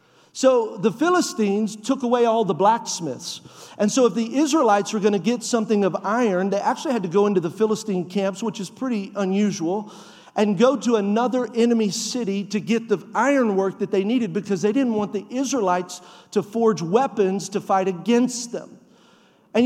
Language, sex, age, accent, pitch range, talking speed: English, male, 50-69, American, 205-250 Hz, 185 wpm